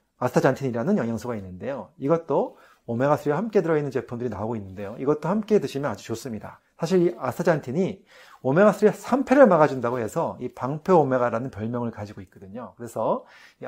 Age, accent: 30-49, native